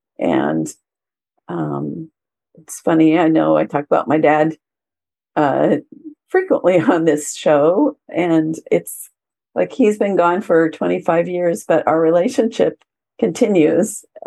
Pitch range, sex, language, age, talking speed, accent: 150-210 Hz, female, English, 50-69, 120 wpm, American